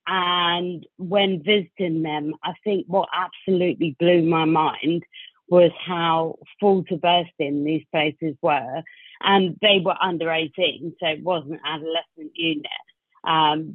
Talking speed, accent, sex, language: 135 wpm, British, female, English